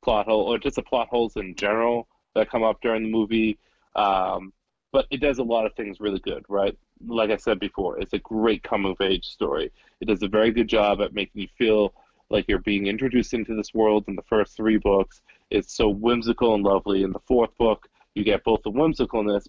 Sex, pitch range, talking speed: male, 100-120 Hz, 220 wpm